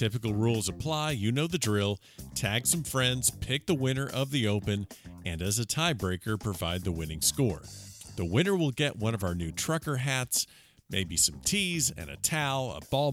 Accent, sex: American, male